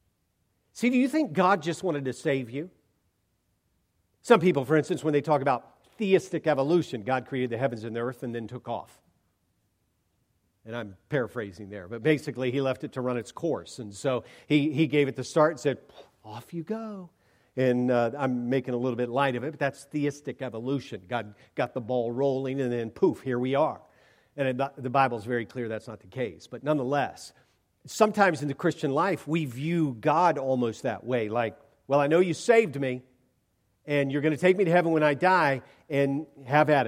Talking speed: 205 wpm